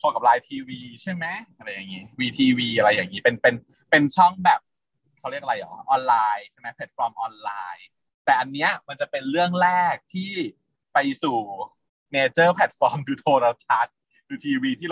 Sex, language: male, Thai